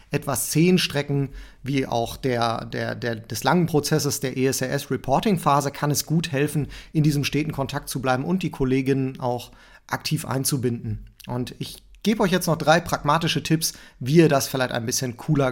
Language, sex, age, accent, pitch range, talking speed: German, male, 30-49, German, 130-160 Hz, 175 wpm